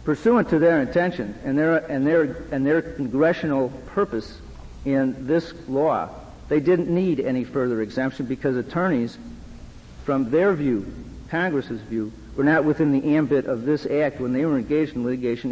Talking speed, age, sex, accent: 160 wpm, 50-69, male, American